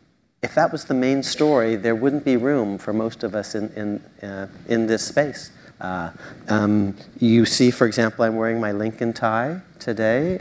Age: 40-59